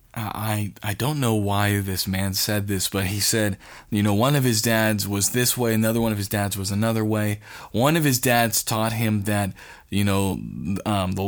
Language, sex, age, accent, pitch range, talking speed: English, male, 20-39, American, 105-130 Hz, 215 wpm